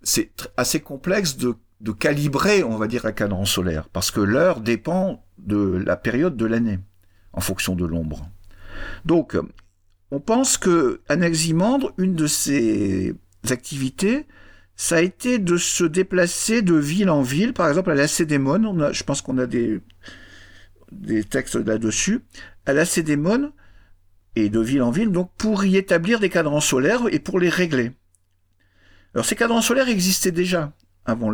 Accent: French